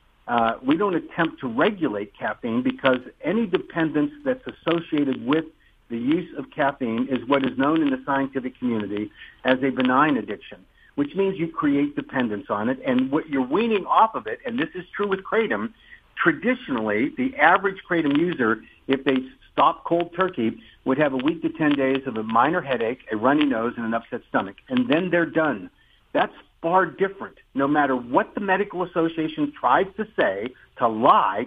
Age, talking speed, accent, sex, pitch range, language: 60-79, 180 wpm, American, male, 130-190 Hz, English